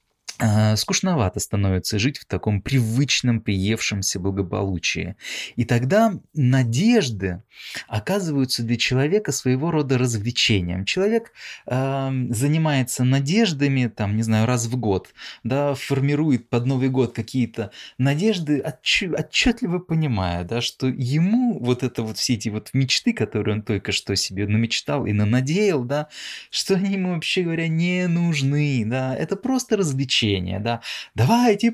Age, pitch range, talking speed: 20-39, 105-150 Hz, 130 wpm